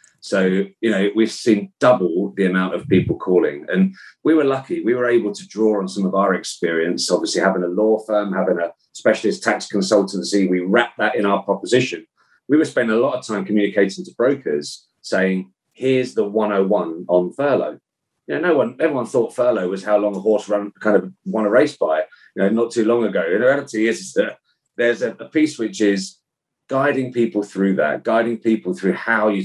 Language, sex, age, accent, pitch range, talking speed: English, male, 40-59, British, 95-115 Hz, 210 wpm